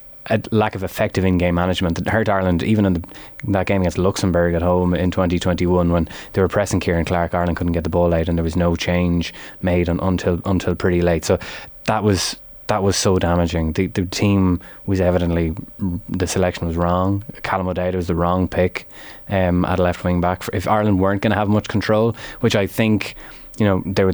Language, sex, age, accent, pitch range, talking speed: English, male, 20-39, Irish, 90-105 Hz, 215 wpm